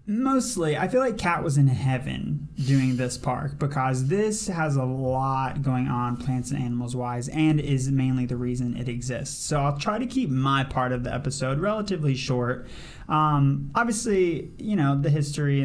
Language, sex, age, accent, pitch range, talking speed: English, male, 20-39, American, 130-165 Hz, 180 wpm